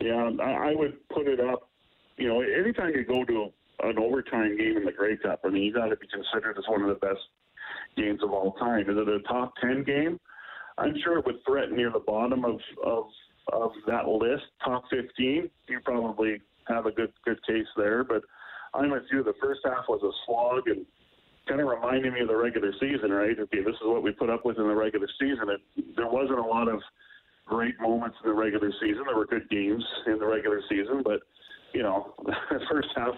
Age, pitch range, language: 40-59, 110-145 Hz, English